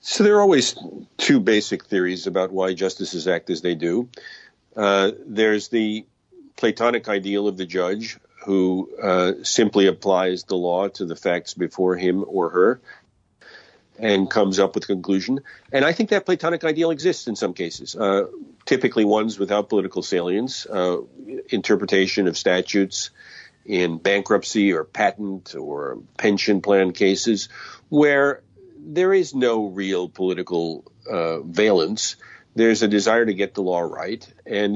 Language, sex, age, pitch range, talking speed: English, male, 50-69, 95-130 Hz, 150 wpm